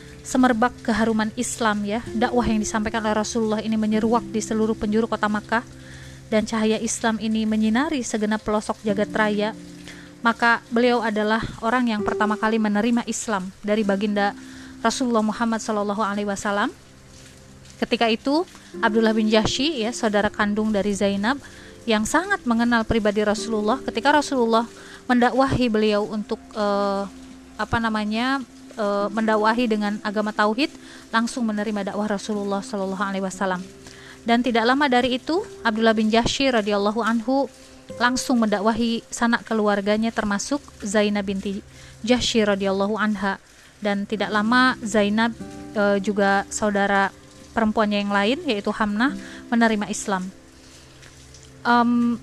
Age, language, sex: 20-39, Indonesian, female